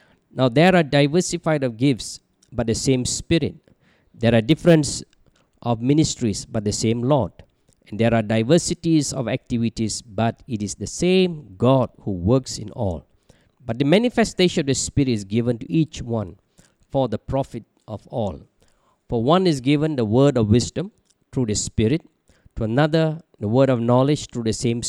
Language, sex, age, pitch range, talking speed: English, male, 50-69, 110-145 Hz, 170 wpm